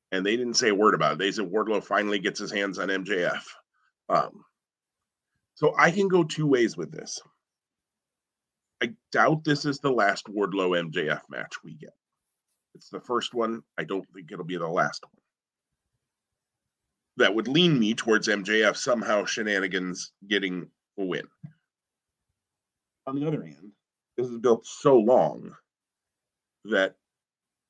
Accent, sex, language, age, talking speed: American, male, English, 40-59, 150 wpm